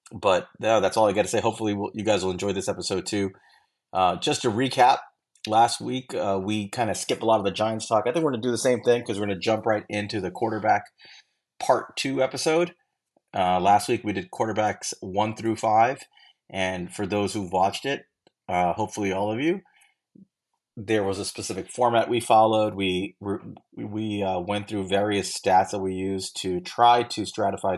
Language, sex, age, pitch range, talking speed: English, male, 30-49, 95-110 Hz, 210 wpm